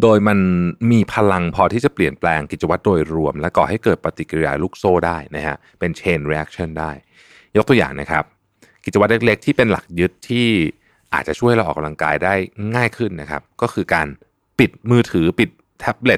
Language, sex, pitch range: Thai, male, 80-115 Hz